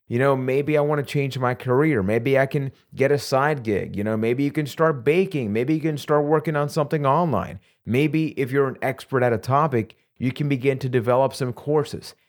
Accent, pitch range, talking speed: American, 110-145 Hz, 225 wpm